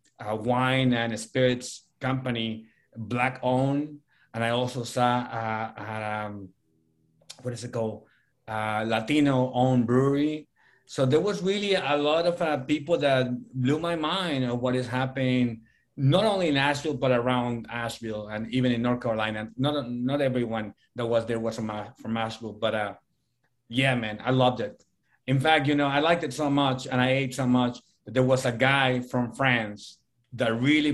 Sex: male